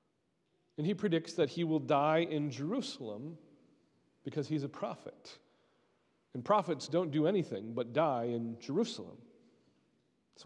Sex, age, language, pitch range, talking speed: male, 40-59, English, 150-235 Hz, 130 wpm